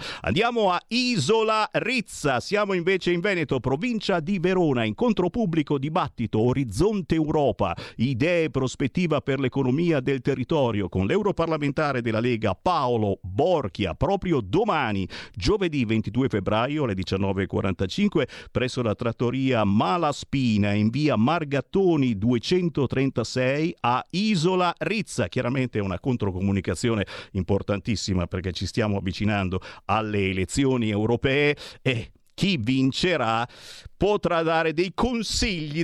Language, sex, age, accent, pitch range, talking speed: Italian, male, 50-69, native, 110-170 Hz, 110 wpm